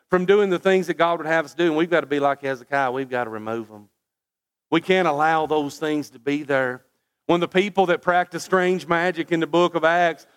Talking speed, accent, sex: 245 wpm, American, male